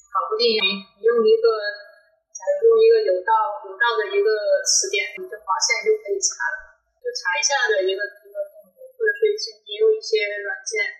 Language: Chinese